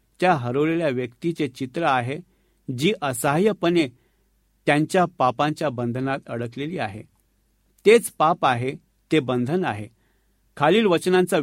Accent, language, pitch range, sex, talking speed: native, Marathi, 130-165 Hz, male, 80 wpm